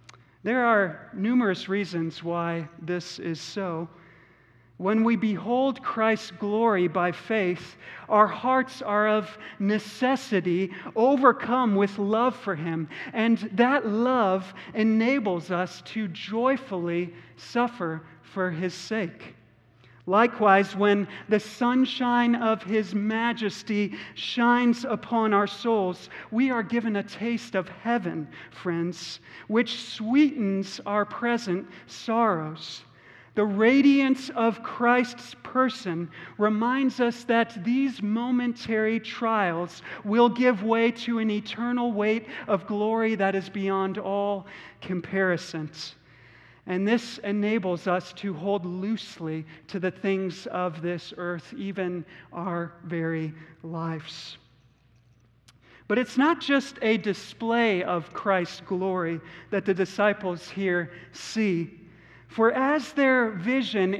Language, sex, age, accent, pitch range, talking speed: English, male, 40-59, American, 175-230 Hz, 115 wpm